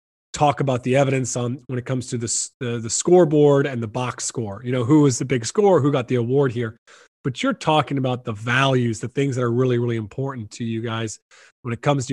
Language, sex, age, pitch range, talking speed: English, male, 20-39, 125-150 Hz, 240 wpm